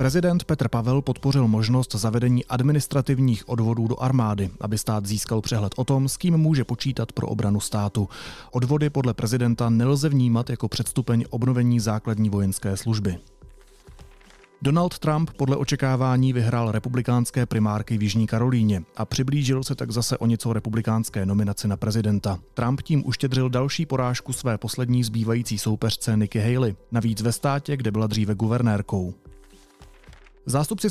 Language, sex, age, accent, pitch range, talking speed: Czech, male, 30-49, native, 110-135 Hz, 145 wpm